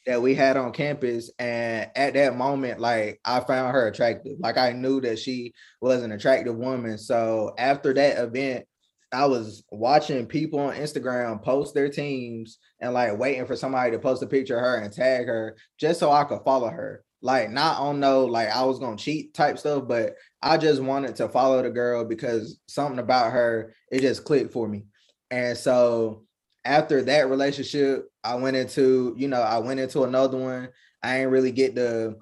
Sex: male